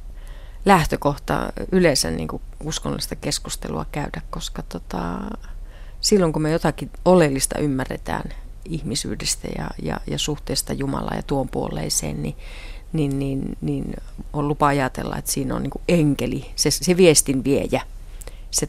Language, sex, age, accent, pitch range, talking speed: Finnish, female, 30-49, native, 130-160 Hz, 130 wpm